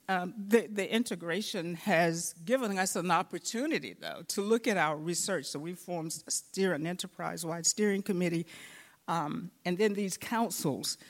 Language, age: English, 50-69